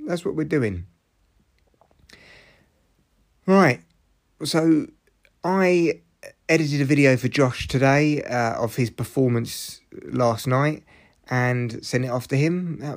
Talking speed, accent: 120 wpm, British